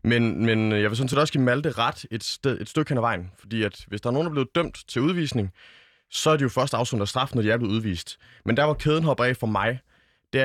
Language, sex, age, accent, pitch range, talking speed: Danish, male, 20-39, native, 105-135 Hz, 300 wpm